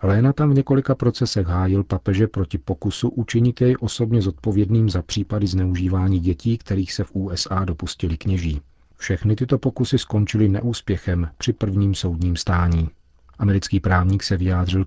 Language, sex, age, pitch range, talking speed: Czech, male, 40-59, 90-105 Hz, 140 wpm